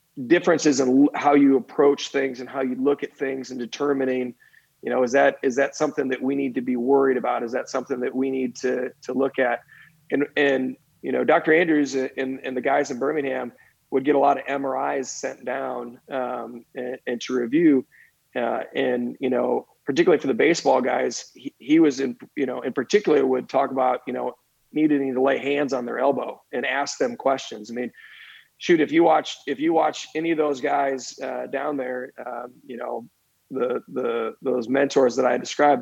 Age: 30-49